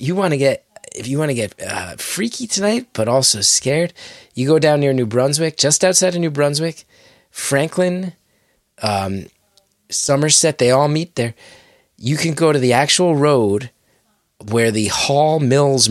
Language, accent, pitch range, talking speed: English, American, 110-140 Hz, 165 wpm